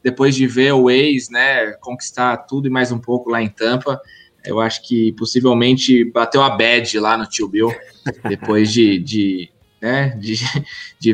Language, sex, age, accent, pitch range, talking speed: English, male, 20-39, Brazilian, 110-140 Hz, 165 wpm